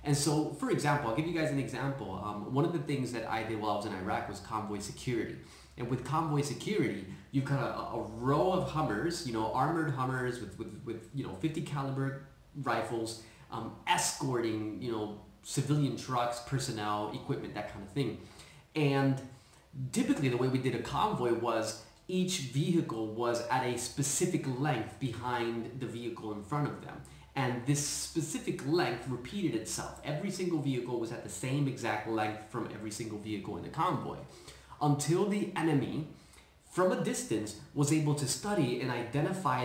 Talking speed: 175 wpm